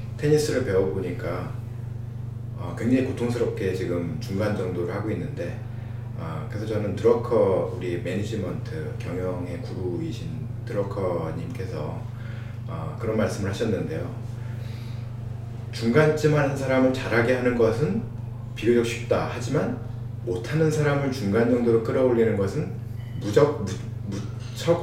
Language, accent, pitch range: Korean, native, 115-120 Hz